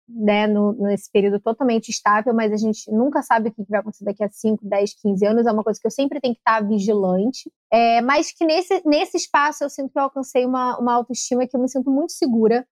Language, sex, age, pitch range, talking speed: Portuguese, female, 20-39, 220-280 Hz, 230 wpm